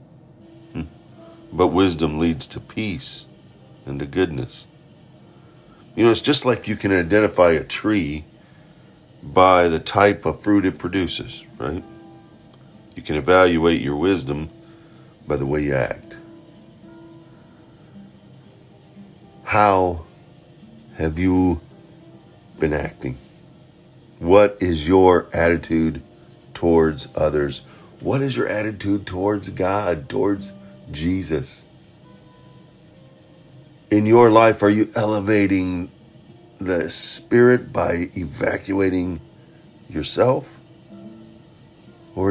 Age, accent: 50-69, American